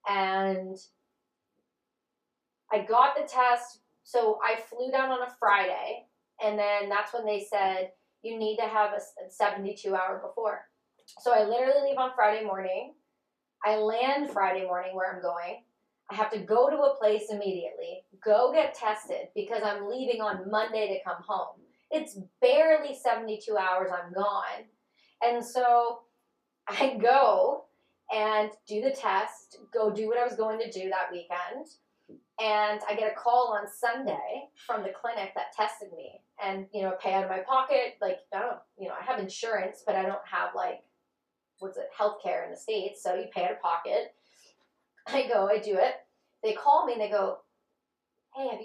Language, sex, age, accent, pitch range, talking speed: English, female, 30-49, American, 205-250 Hz, 175 wpm